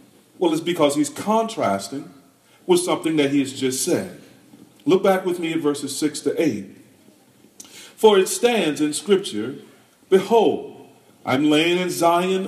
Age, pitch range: 40-59, 125-185 Hz